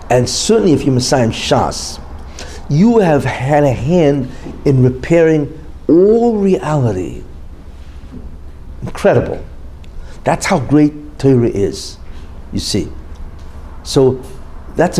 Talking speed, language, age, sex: 100 wpm, English, 60-79, male